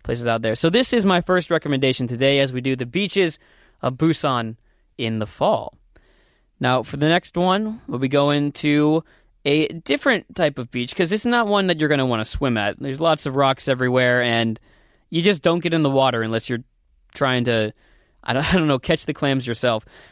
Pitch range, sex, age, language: 130-170 Hz, male, 20-39, Korean